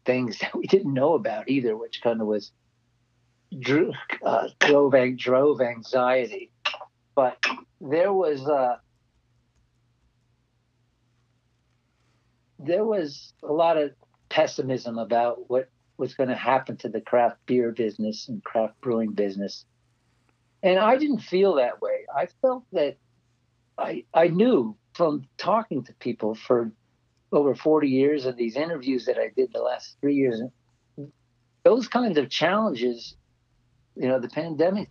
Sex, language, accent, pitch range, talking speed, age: male, English, American, 120-145 Hz, 135 wpm, 50-69